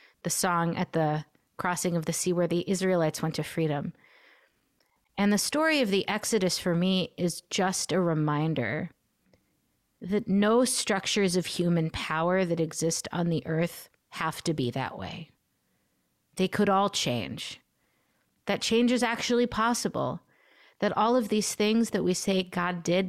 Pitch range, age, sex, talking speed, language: 165-210 Hz, 30-49, female, 160 wpm, English